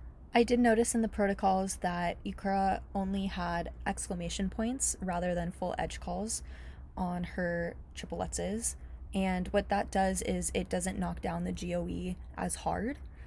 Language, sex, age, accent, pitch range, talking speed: English, female, 20-39, American, 165-190 Hz, 155 wpm